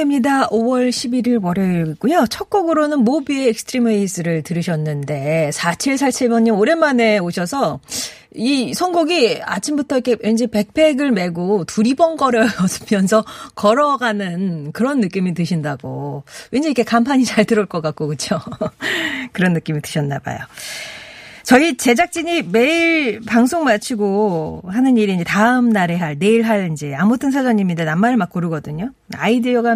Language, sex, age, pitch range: Korean, female, 40-59, 175-265 Hz